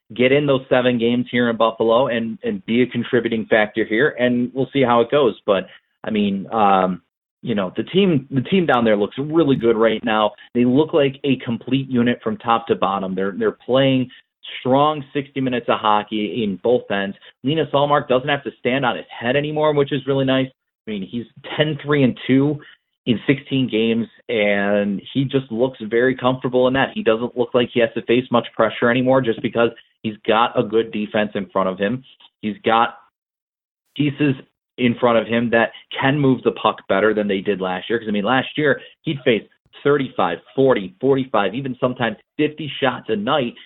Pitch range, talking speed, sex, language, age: 110-135 Hz, 200 wpm, male, English, 30-49